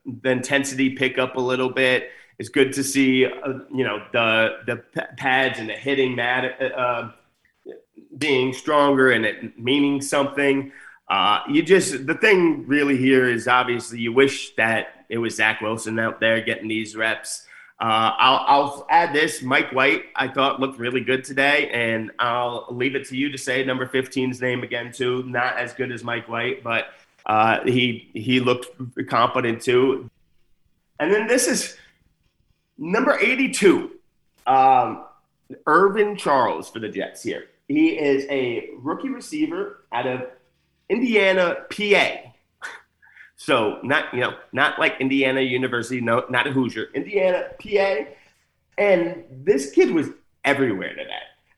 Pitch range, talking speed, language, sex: 120-175 Hz, 155 wpm, English, male